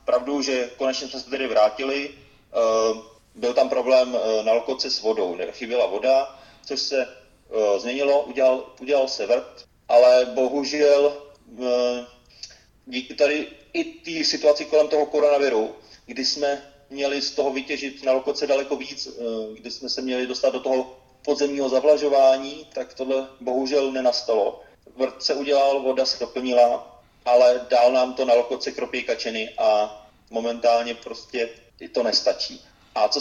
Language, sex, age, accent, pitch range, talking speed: Czech, male, 30-49, native, 120-140 Hz, 135 wpm